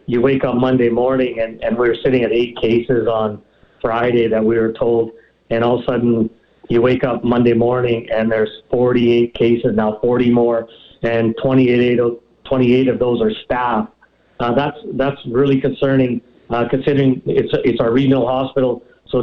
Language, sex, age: English, male, 50-69